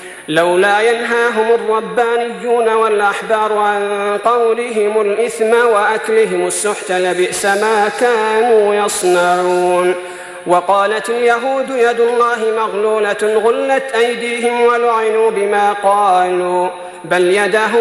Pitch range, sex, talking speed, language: 185-235 Hz, male, 85 wpm, Arabic